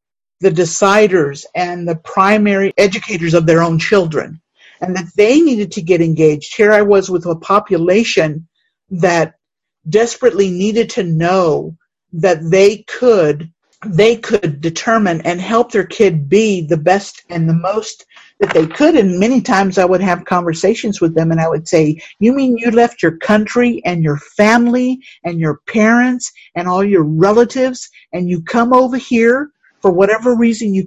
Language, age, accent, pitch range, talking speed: English, 50-69, American, 170-235 Hz, 165 wpm